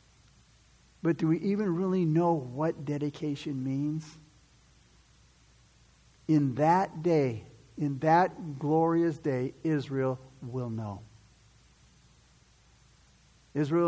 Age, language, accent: 50-69, English, American